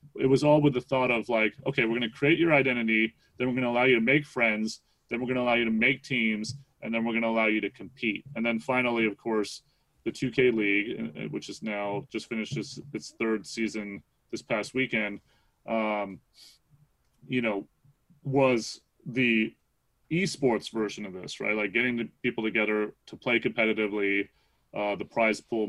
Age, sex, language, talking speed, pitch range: 30-49, male, English, 195 wpm, 105-125 Hz